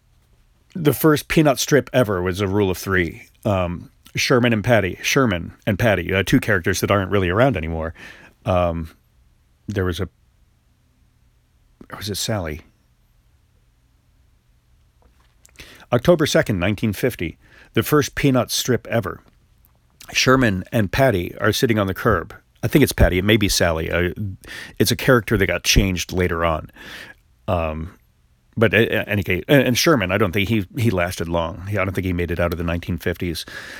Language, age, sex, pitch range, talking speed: English, 40-59, male, 85-120 Hz, 160 wpm